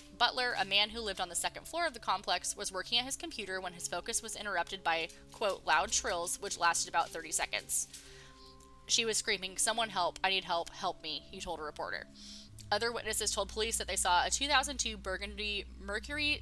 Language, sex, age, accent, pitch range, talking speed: English, female, 10-29, American, 165-215 Hz, 205 wpm